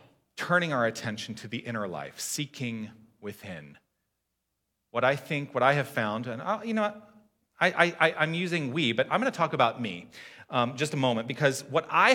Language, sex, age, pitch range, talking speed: English, male, 40-59, 105-150 Hz, 195 wpm